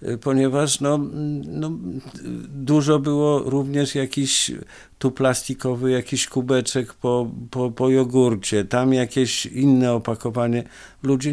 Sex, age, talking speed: male, 50-69, 95 wpm